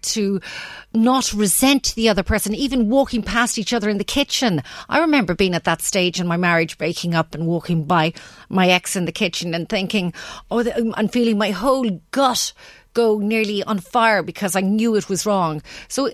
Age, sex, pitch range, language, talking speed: 40-59, female, 175-225 Hz, English, 190 wpm